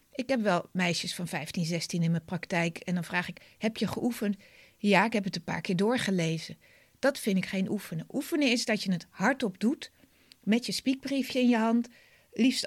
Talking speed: 210 wpm